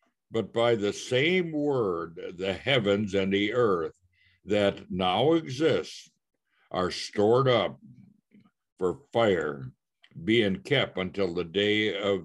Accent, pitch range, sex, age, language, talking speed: American, 90-110 Hz, male, 60-79, English, 120 wpm